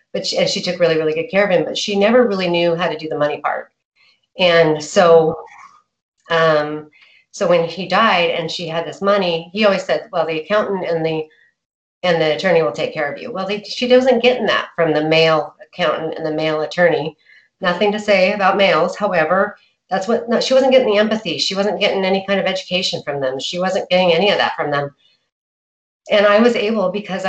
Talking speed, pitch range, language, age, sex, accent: 215 wpm, 160-205 Hz, English, 40-59, female, American